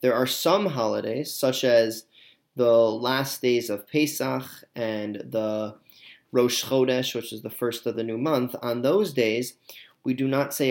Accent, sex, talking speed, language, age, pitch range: American, male, 170 wpm, English, 30-49, 120-150 Hz